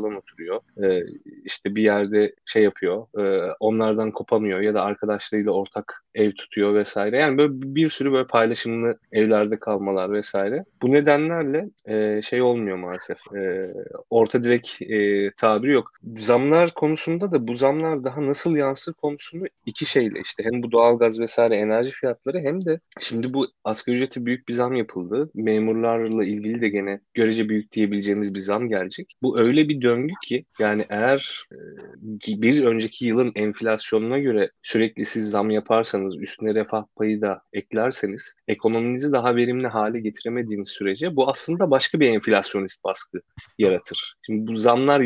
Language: Turkish